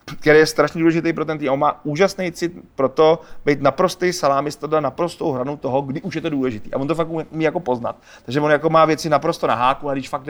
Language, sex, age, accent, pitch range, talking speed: Czech, male, 30-49, native, 135-165 Hz, 245 wpm